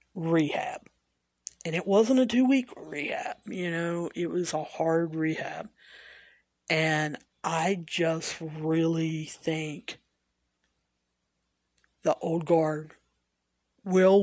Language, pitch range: English, 150-215 Hz